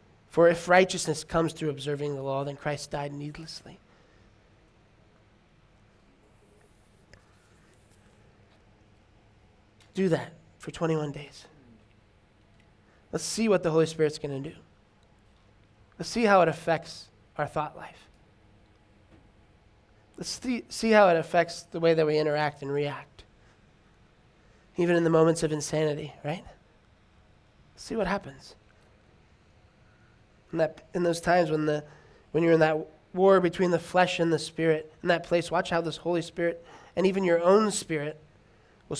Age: 20-39